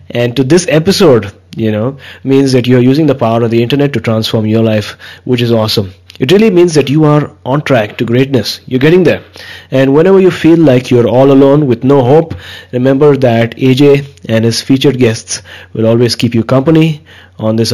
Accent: Indian